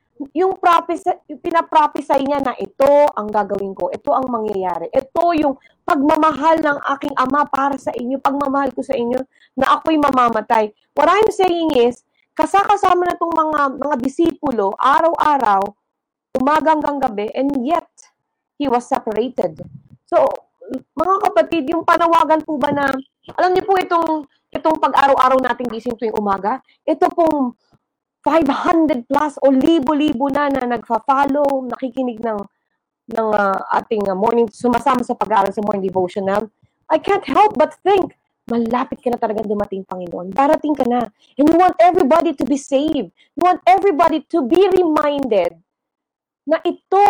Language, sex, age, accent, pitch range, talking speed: Filipino, female, 20-39, native, 245-325 Hz, 145 wpm